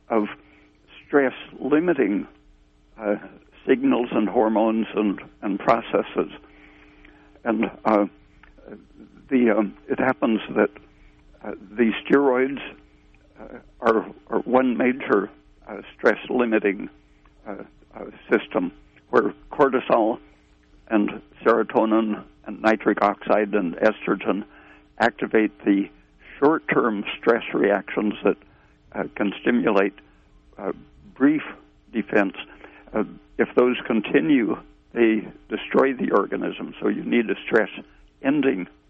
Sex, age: male, 60-79